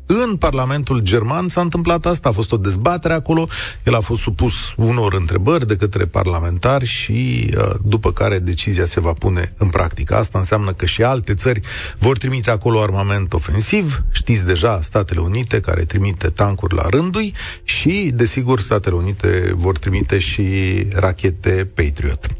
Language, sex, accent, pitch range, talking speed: Romanian, male, native, 100-130 Hz, 155 wpm